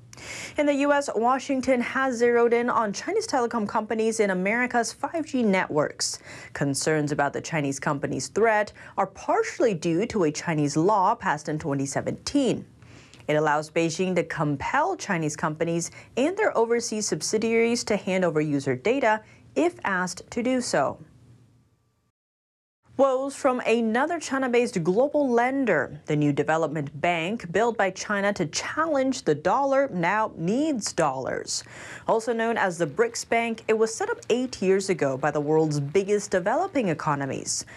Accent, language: American, English